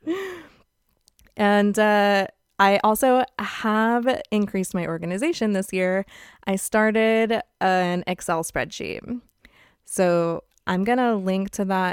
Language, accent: English, American